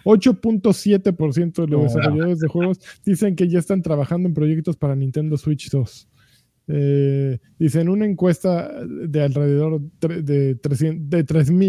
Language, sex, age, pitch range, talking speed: Spanish, male, 20-39, 140-165 Hz, 135 wpm